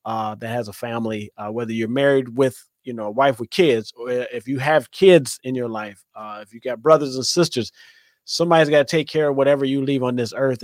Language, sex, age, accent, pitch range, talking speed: English, male, 30-49, American, 115-145 Hz, 235 wpm